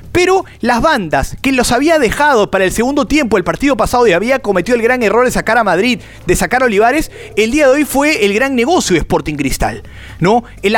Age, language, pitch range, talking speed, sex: 30-49, Spanish, 190-250 Hz, 230 wpm, male